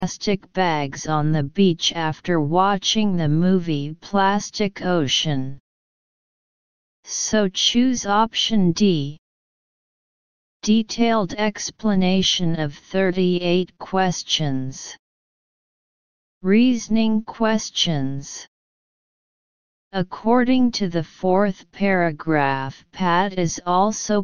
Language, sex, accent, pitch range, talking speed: English, female, American, 155-200 Hz, 75 wpm